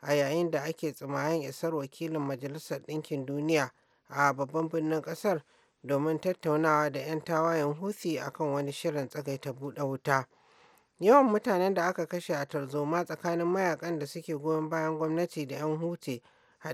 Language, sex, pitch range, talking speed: English, male, 145-170 Hz, 160 wpm